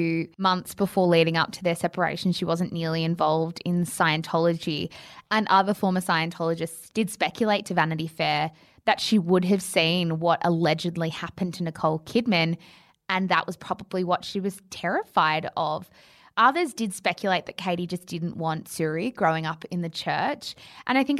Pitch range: 170-200 Hz